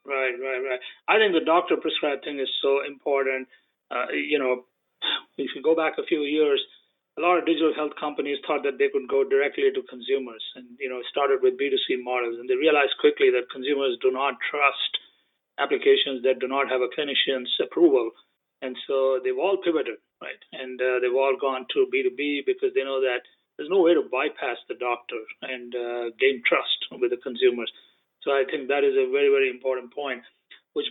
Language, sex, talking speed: English, male, 200 wpm